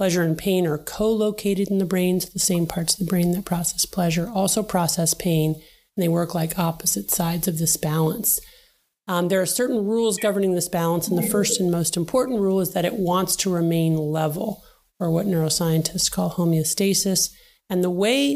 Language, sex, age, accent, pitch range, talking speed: English, male, 30-49, American, 165-195 Hz, 195 wpm